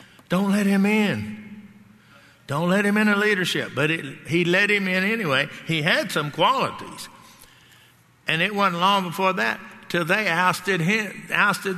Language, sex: English, male